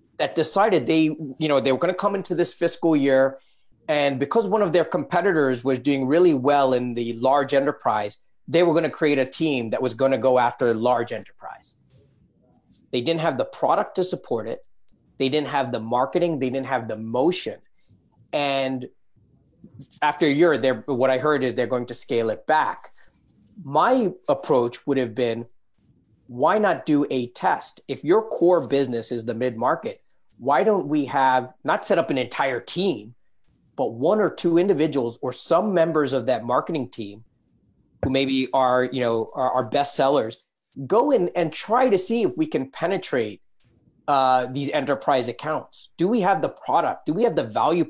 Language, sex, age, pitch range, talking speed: English, male, 30-49, 130-165 Hz, 180 wpm